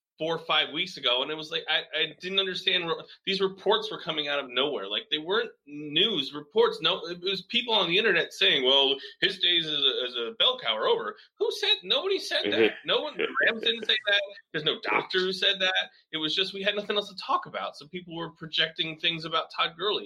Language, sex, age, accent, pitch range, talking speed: English, male, 30-49, American, 125-185 Hz, 230 wpm